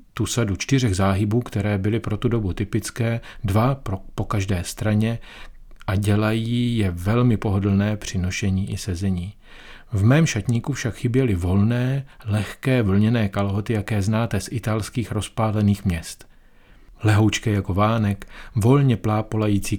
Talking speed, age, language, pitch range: 130 wpm, 40-59, Czech, 100-115 Hz